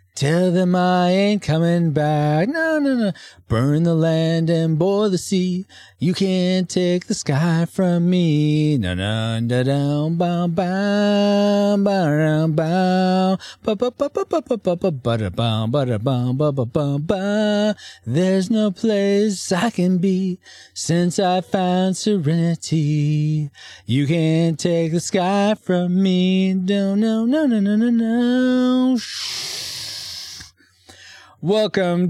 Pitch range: 125-185 Hz